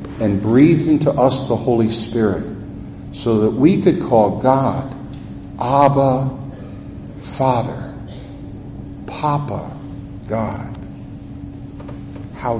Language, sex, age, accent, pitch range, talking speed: English, male, 50-69, American, 115-140 Hz, 85 wpm